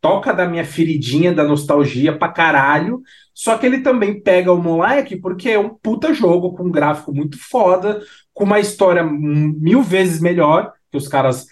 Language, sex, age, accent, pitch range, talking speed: Portuguese, male, 20-39, Brazilian, 140-185 Hz, 175 wpm